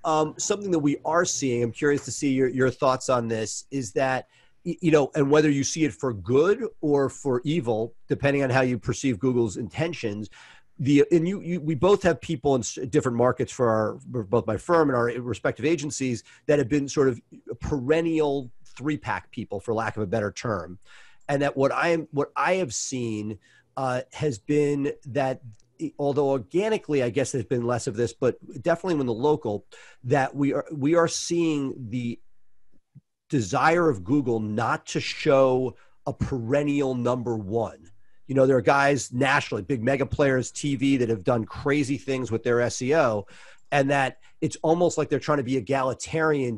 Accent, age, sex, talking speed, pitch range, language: American, 40-59, male, 185 wpm, 120-150 Hz, English